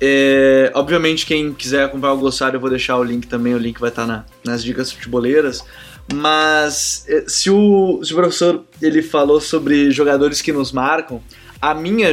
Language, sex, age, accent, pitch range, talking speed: Portuguese, male, 20-39, Brazilian, 130-155 Hz, 185 wpm